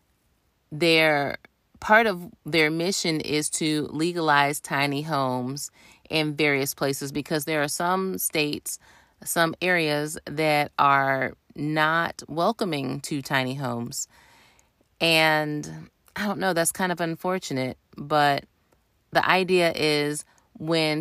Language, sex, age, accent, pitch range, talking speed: English, female, 30-49, American, 140-175 Hz, 115 wpm